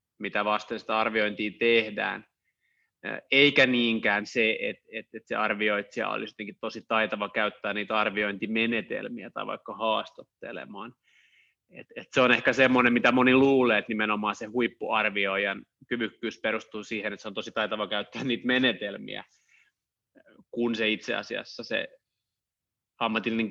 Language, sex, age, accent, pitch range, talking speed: Finnish, male, 20-39, native, 105-120 Hz, 135 wpm